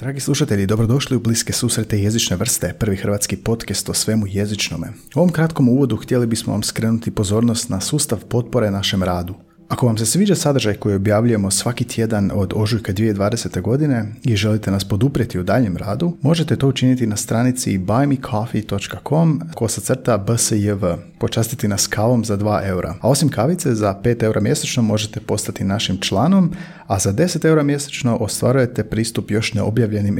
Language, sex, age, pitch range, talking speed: Croatian, male, 30-49, 100-125 Hz, 170 wpm